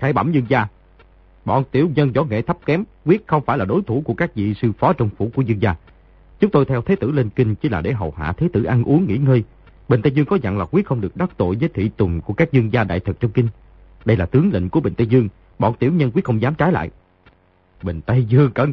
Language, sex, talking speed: Vietnamese, male, 280 wpm